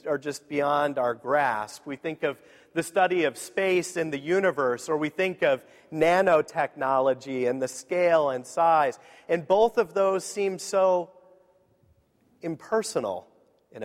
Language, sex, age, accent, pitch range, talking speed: English, male, 40-59, American, 145-185 Hz, 145 wpm